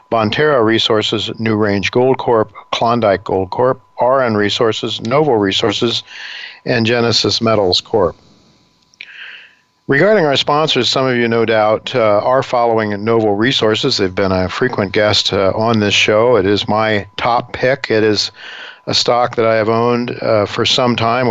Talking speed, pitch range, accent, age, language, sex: 160 wpm, 105-125 Hz, American, 50-69, English, male